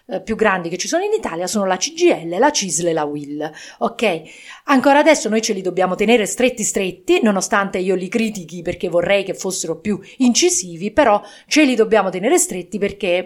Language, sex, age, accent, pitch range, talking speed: English, female, 40-59, Italian, 175-225 Hz, 190 wpm